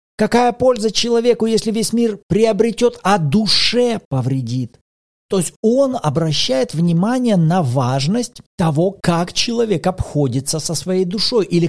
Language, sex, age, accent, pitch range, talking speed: Russian, male, 40-59, native, 145-215 Hz, 130 wpm